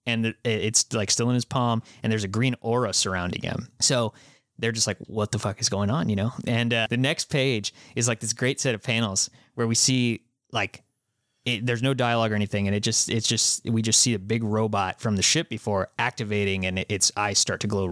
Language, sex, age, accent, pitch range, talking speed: English, male, 20-39, American, 105-125 Hz, 235 wpm